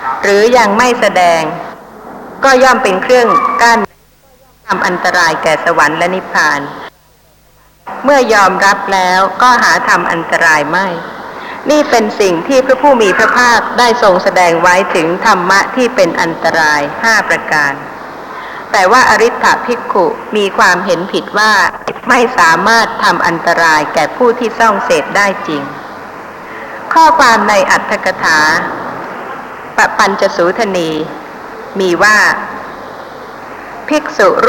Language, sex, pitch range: Thai, female, 195-250 Hz